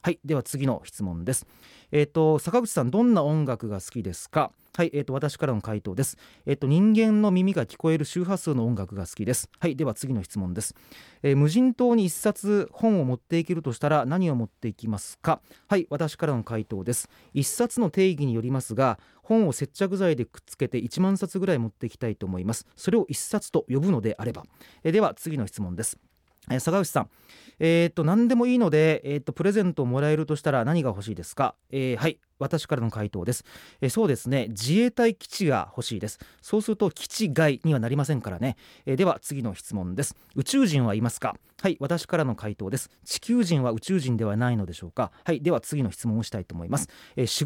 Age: 30-49